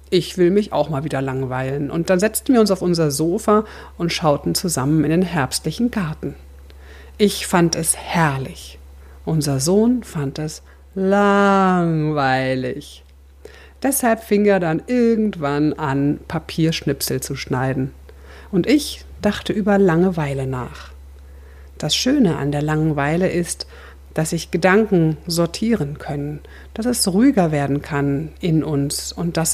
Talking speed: 135 wpm